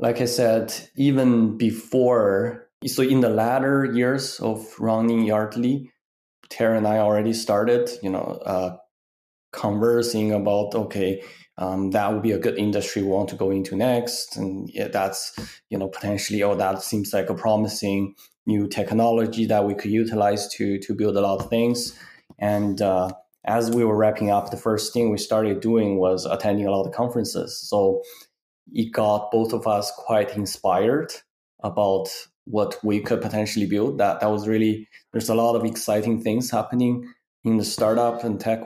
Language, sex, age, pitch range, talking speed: English, male, 20-39, 100-115 Hz, 175 wpm